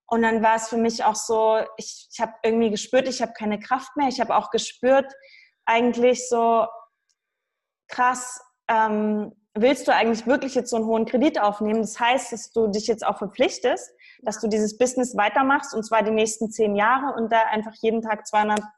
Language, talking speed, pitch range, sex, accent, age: German, 195 wpm, 210-240 Hz, female, German, 20-39